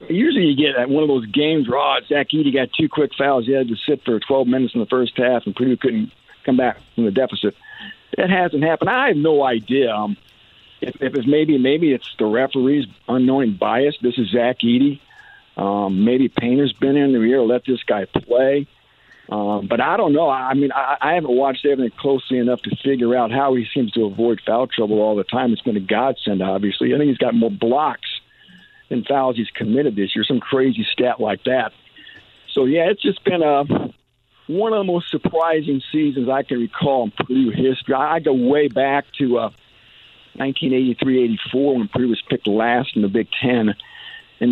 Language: English